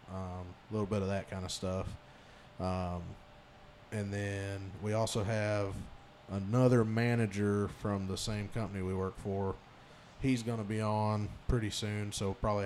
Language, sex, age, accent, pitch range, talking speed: English, male, 20-39, American, 100-115 Hz, 150 wpm